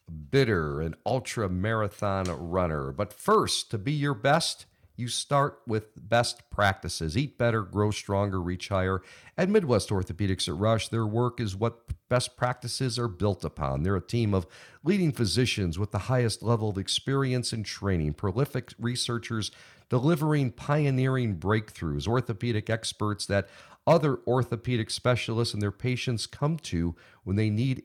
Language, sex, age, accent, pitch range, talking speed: English, male, 50-69, American, 95-125 Hz, 150 wpm